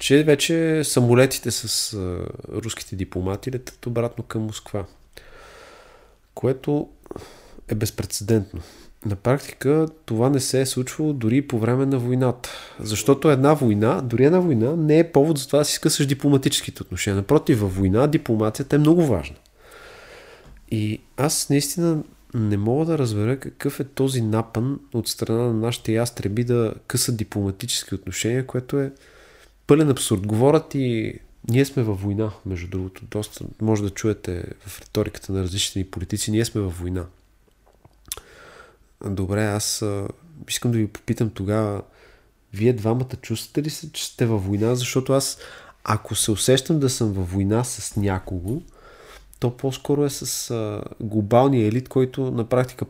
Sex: male